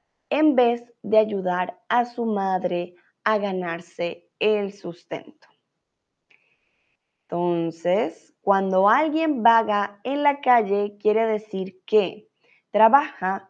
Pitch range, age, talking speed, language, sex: 185-240 Hz, 20-39, 100 wpm, Spanish, female